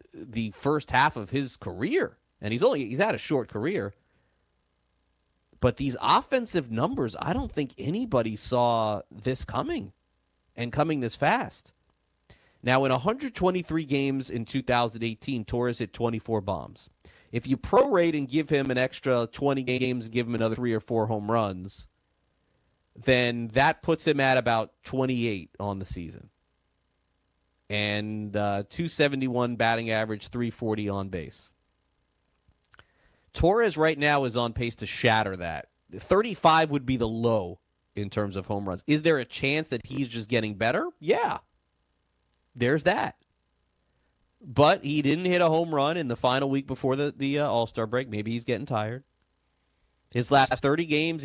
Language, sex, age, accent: English, male, 30-49, American